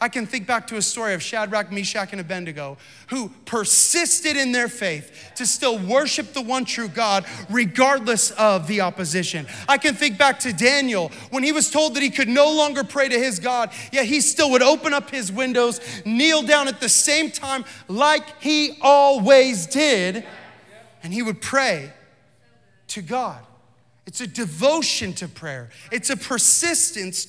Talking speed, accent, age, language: 175 wpm, American, 30-49, English